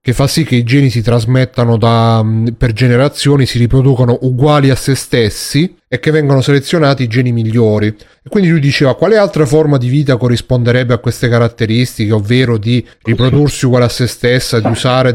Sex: male